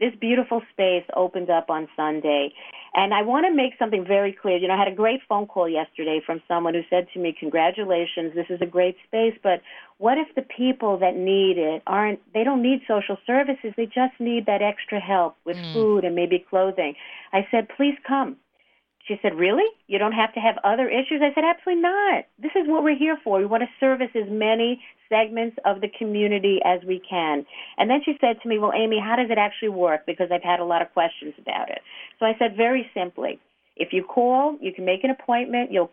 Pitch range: 180-245 Hz